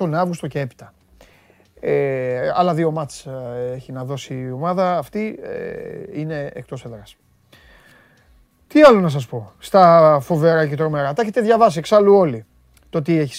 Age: 30-49